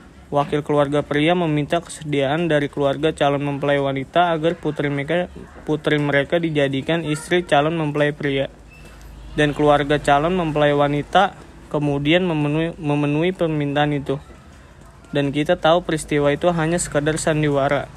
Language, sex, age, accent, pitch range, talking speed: Indonesian, male, 20-39, native, 145-160 Hz, 125 wpm